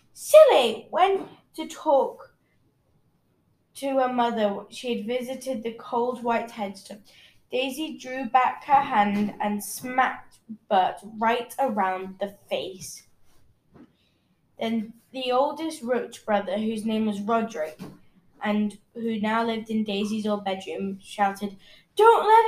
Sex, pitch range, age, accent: female, 205-245 Hz, 10-29, British